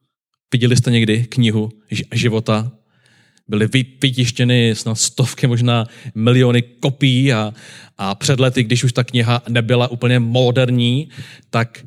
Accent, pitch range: native, 115-130 Hz